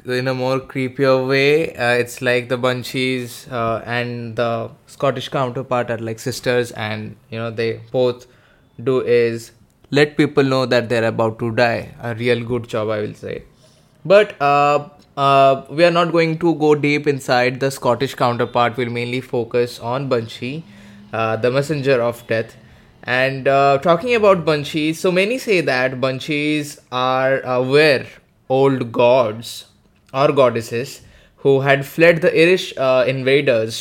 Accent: Indian